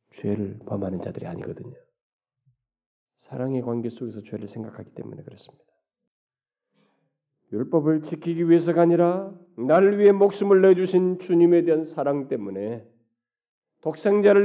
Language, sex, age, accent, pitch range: Korean, male, 40-59, native, 125-205 Hz